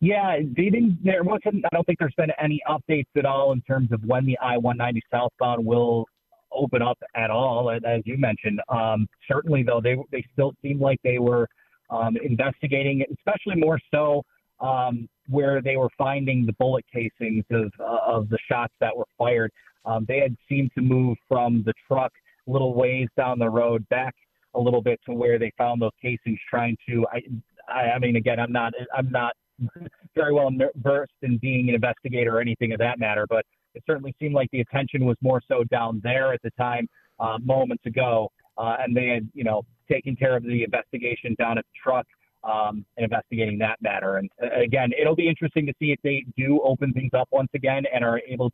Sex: male